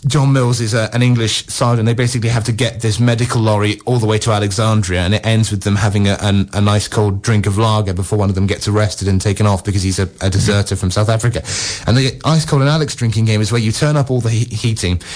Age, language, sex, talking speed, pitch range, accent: 30-49, English, male, 265 wpm, 110-135 Hz, British